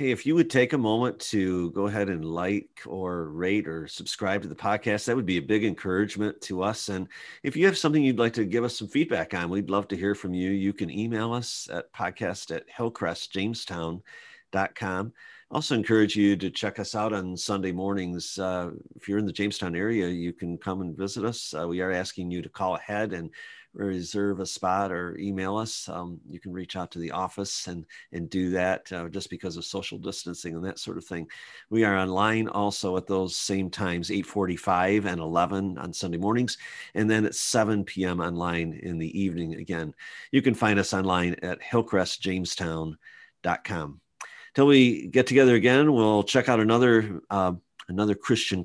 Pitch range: 90-110 Hz